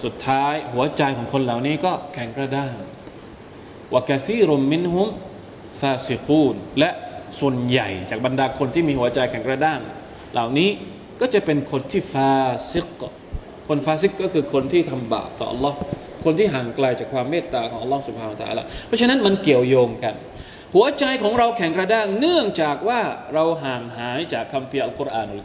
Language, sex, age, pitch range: Thai, male, 20-39, 130-205 Hz